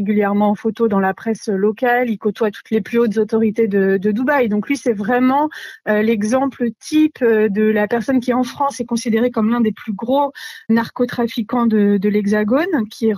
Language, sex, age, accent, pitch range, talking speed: French, female, 30-49, French, 200-245 Hz, 195 wpm